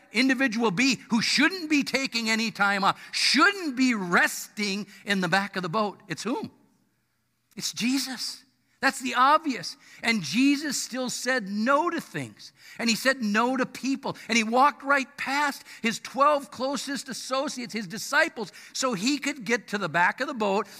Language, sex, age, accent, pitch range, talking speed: English, male, 50-69, American, 155-230 Hz, 170 wpm